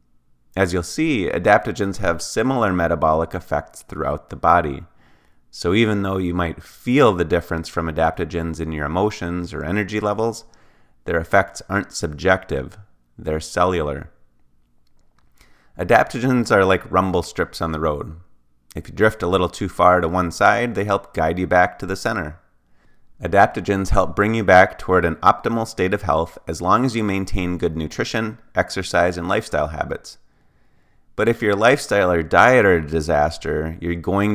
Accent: American